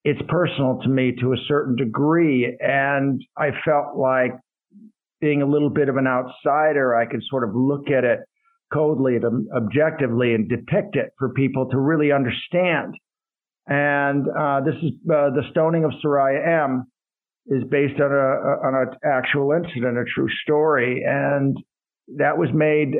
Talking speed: 160 wpm